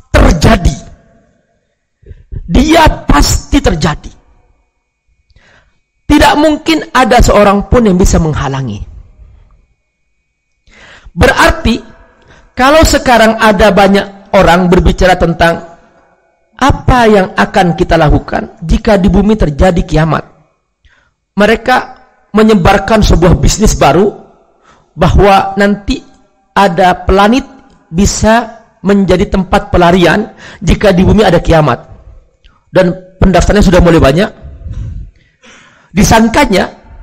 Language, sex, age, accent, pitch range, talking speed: Indonesian, male, 50-69, native, 180-240 Hz, 90 wpm